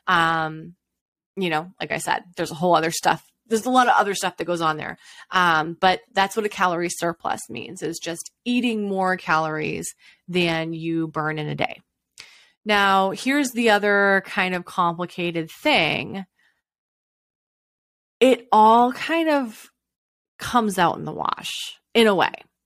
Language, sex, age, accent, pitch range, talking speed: English, female, 20-39, American, 165-200 Hz, 160 wpm